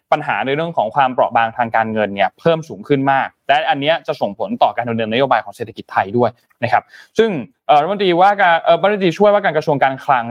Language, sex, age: Thai, male, 20-39